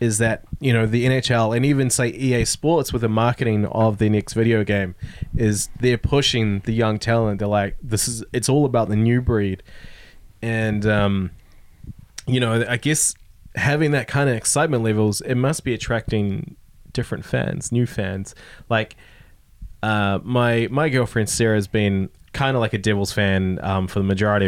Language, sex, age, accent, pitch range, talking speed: English, male, 20-39, Australian, 100-125 Hz, 180 wpm